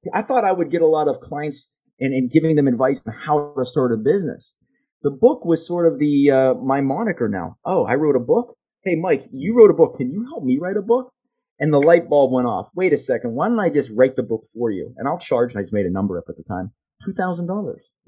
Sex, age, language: male, 30-49, English